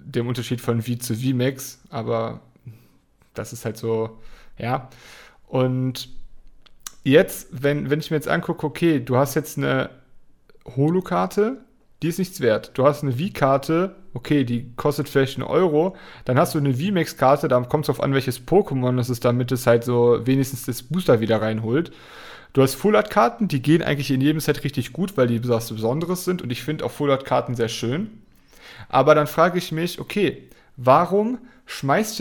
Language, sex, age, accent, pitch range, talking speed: German, male, 40-59, German, 125-165 Hz, 180 wpm